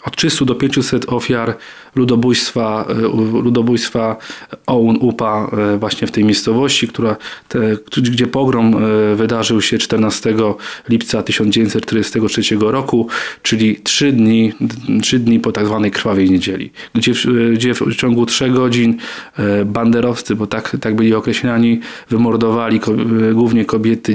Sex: male